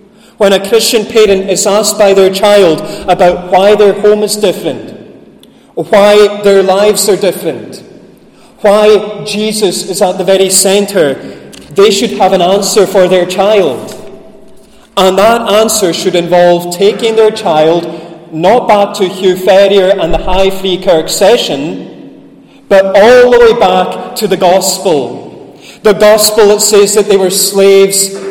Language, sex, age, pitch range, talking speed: English, male, 30-49, 180-210 Hz, 150 wpm